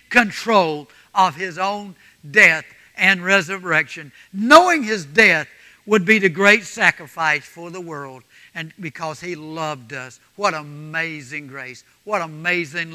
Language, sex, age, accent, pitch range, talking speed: English, male, 60-79, American, 145-195 Hz, 130 wpm